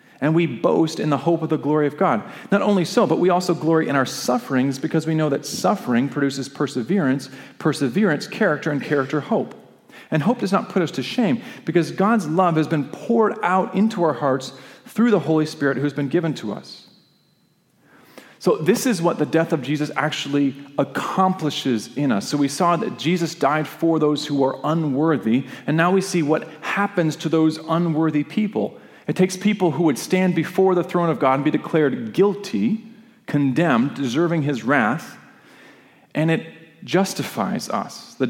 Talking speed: 185 wpm